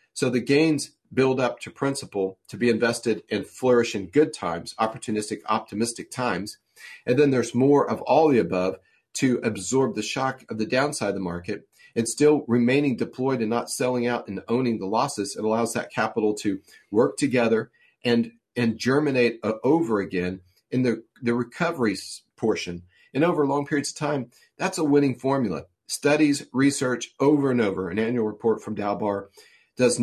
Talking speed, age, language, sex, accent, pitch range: 175 wpm, 40-59, English, male, American, 110-135 Hz